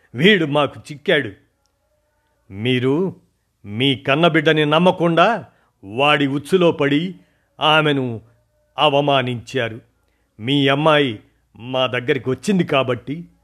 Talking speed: 80 wpm